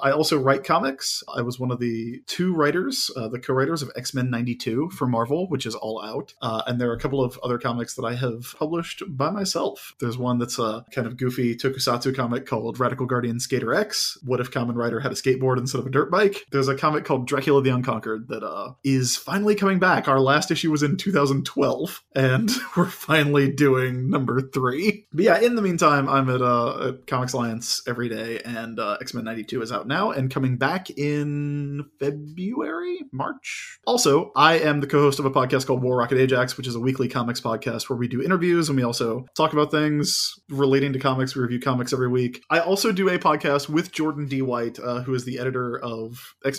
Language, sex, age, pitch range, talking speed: English, male, 20-39, 120-145 Hz, 215 wpm